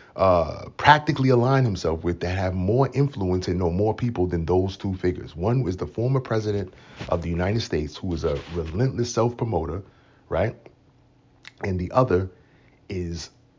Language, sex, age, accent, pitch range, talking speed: English, male, 30-49, American, 90-120 Hz, 160 wpm